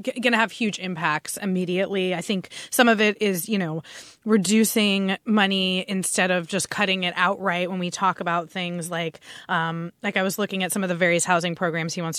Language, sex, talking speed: English, female, 205 wpm